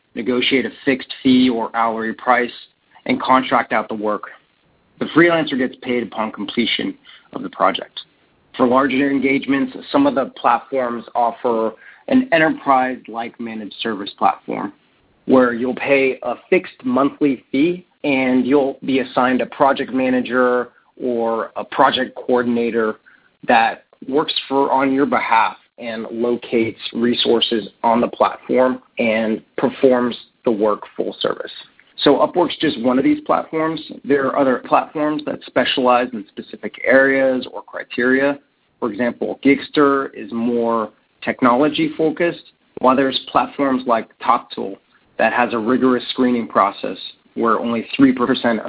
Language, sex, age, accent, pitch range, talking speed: English, male, 30-49, American, 120-145 Hz, 135 wpm